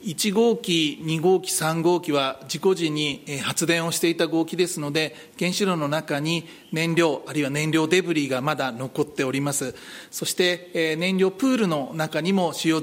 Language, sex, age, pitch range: Japanese, male, 40-59, 155-190 Hz